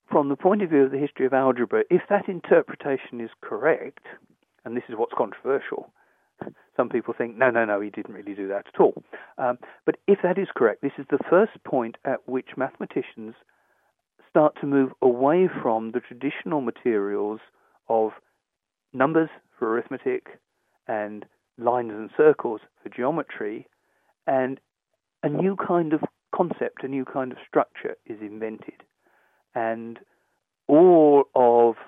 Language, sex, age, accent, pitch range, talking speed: English, male, 40-59, British, 120-145 Hz, 150 wpm